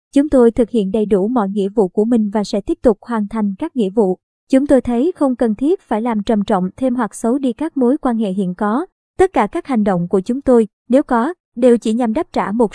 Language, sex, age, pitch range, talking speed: Vietnamese, male, 20-39, 215-260 Hz, 265 wpm